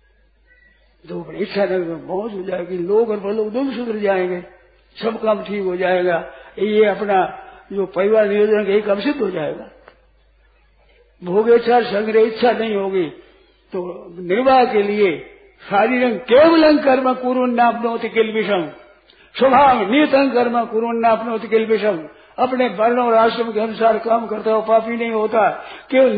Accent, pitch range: native, 200-245 Hz